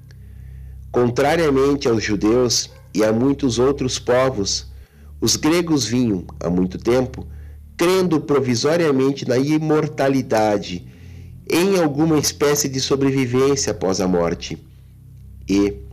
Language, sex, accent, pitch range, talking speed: Portuguese, male, Brazilian, 100-140 Hz, 100 wpm